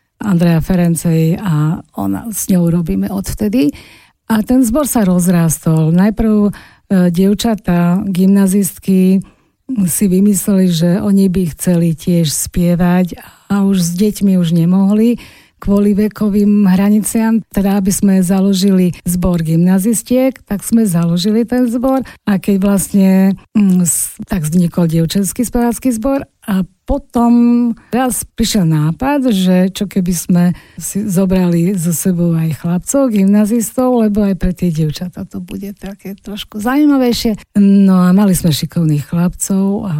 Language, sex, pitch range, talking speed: Slovak, female, 175-210 Hz, 130 wpm